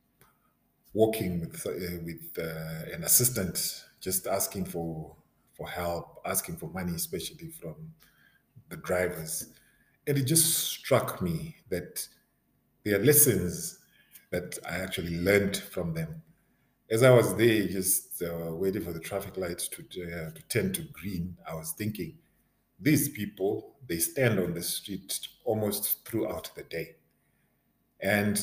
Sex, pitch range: male, 90-115 Hz